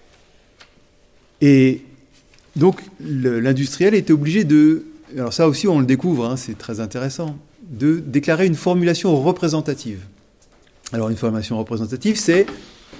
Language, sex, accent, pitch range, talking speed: French, male, French, 120-165 Hz, 120 wpm